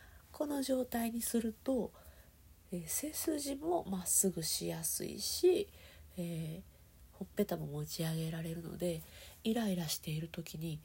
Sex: female